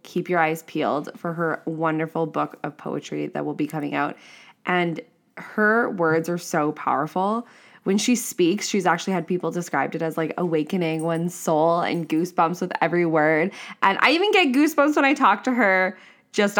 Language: English